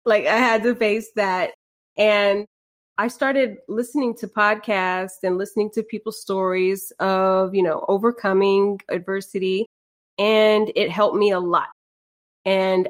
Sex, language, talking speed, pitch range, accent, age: female, English, 135 wpm, 185-220 Hz, American, 20-39